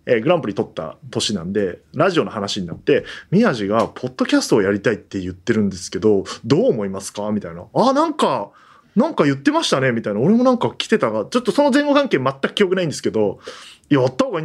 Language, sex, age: Japanese, male, 20-39